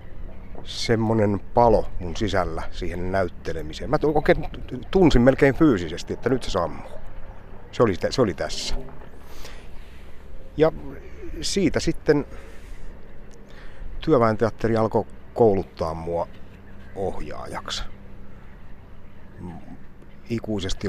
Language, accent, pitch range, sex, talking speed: Finnish, native, 70-100 Hz, male, 80 wpm